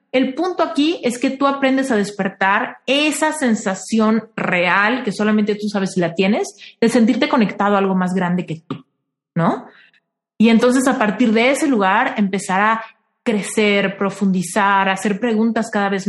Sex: female